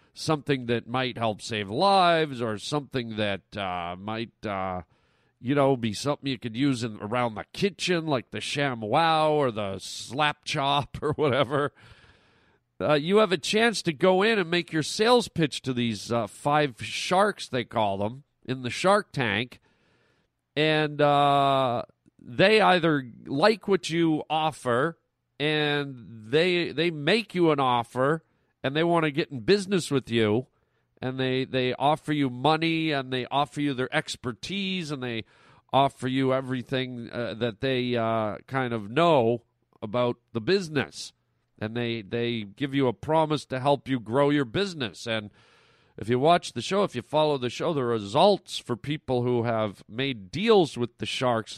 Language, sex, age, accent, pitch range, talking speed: English, male, 40-59, American, 115-150 Hz, 165 wpm